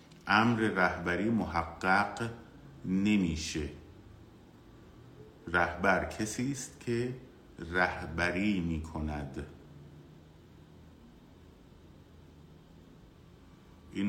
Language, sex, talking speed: Persian, male, 45 wpm